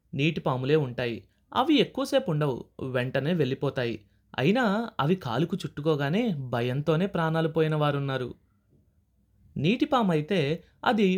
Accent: native